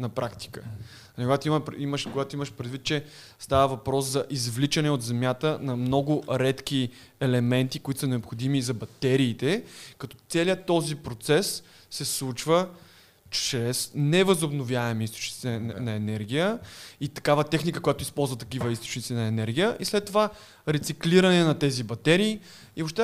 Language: Bulgarian